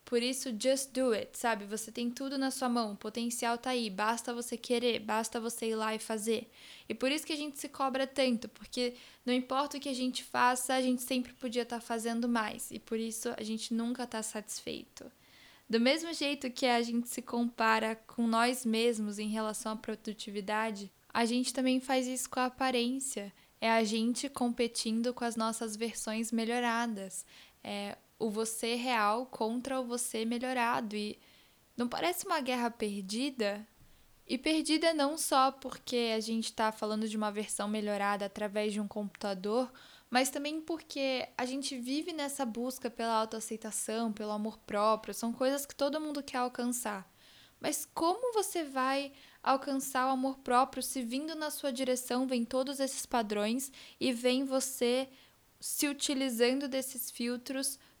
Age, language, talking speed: 10-29, Portuguese, 170 wpm